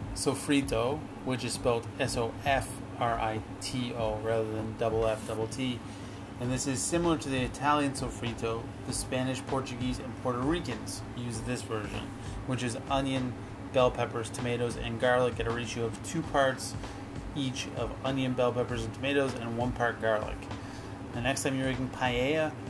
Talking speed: 155 wpm